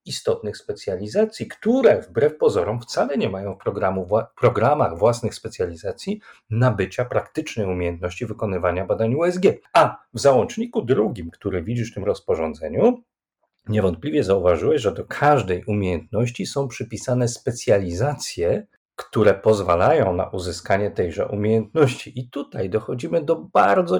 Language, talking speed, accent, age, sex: Polish, 120 wpm, native, 40-59, male